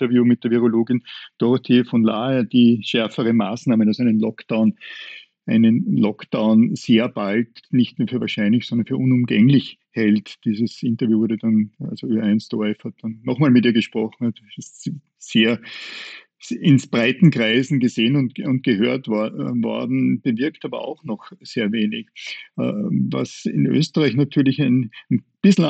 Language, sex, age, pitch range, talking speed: German, male, 50-69, 110-140 Hz, 150 wpm